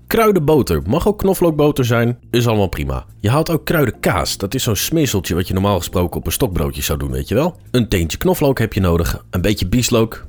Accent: Dutch